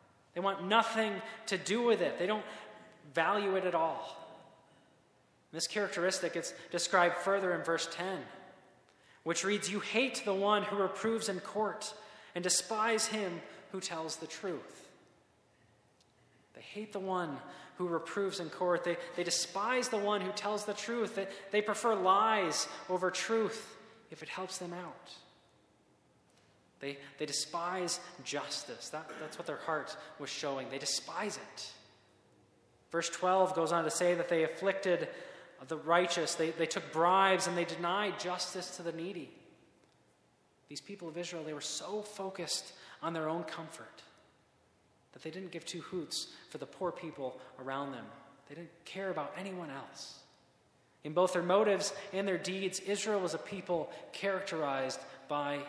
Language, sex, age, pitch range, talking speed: English, male, 20-39, 160-195 Hz, 155 wpm